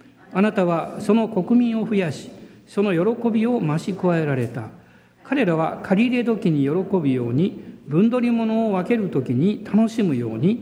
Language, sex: Japanese, male